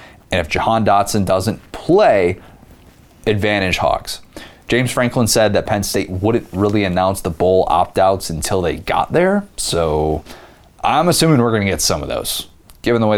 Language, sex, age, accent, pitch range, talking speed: English, male, 30-49, American, 90-115 Hz, 170 wpm